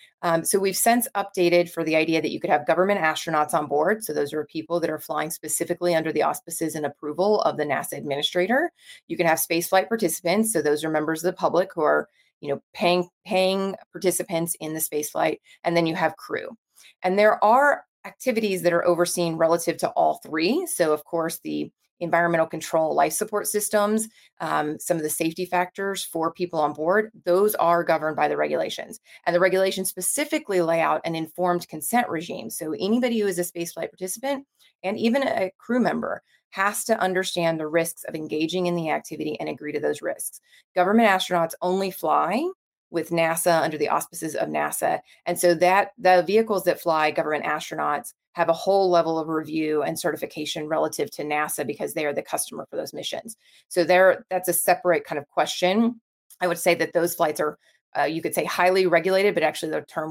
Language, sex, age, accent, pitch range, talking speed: English, female, 30-49, American, 160-190 Hz, 195 wpm